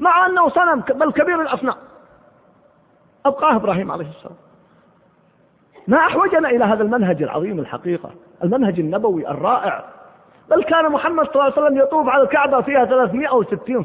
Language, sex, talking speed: Arabic, male, 145 wpm